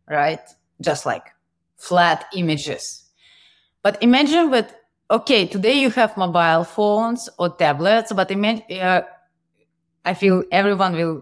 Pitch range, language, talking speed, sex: 165-215 Hz, English, 125 wpm, female